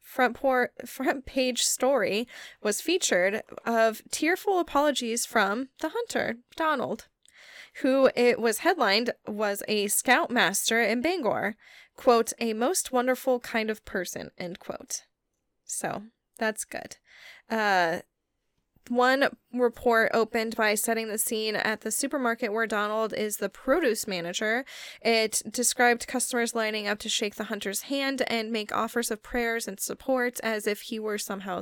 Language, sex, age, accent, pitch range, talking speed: English, female, 10-29, American, 205-245 Hz, 140 wpm